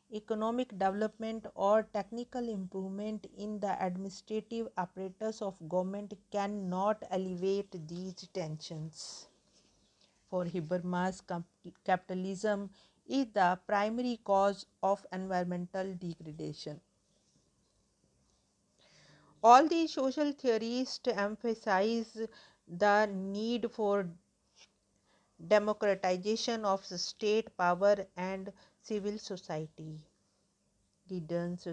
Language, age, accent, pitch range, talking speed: English, 40-59, Indian, 185-220 Hz, 80 wpm